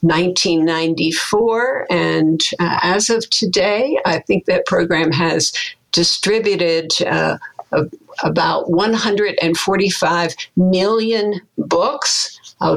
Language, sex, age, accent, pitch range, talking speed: English, female, 60-79, American, 165-215 Hz, 85 wpm